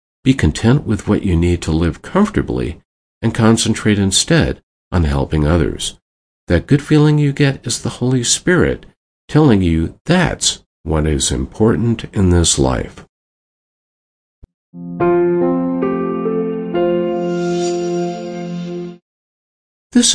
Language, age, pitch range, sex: English, 50-69, 80-130 Hz, male